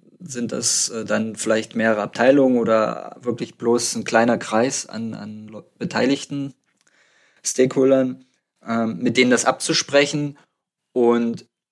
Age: 20-39